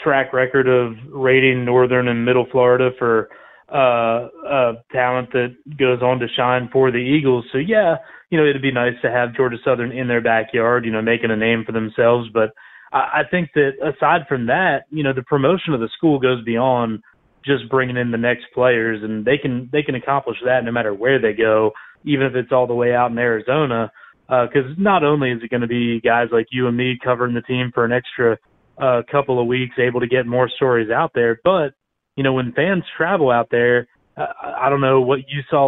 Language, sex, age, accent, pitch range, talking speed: English, male, 30-49, American, 120-140 Hz, 220 wpm